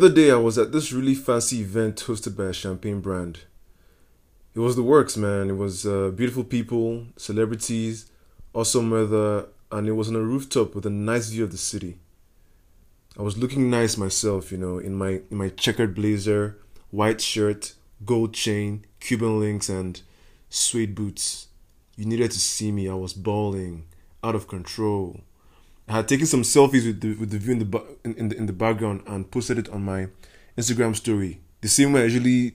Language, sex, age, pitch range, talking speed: English, male, 20-39, 95-115 Hz, 185 wpm